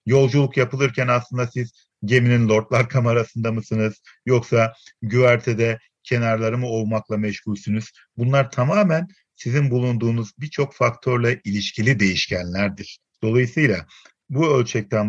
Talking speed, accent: 100 wpm, native